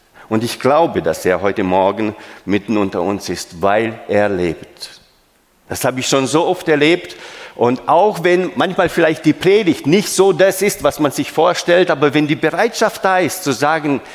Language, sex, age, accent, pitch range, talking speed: German, male, 50-69, German, 110-170 Hz, 185 wpm